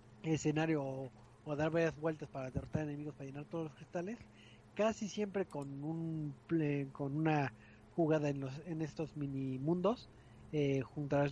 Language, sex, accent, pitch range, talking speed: Spanish, male, Mexican, 130-160 Hz, 160 wpm